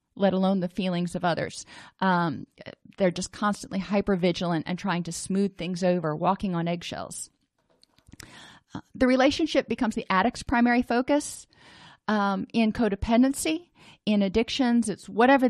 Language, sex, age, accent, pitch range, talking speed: English, female, 30-49, American, 180-235 Hz, 135 wpm